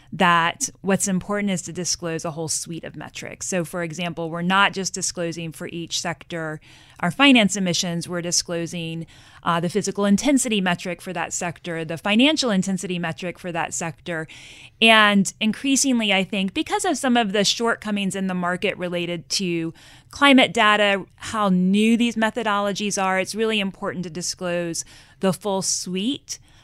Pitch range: 165-200 Hz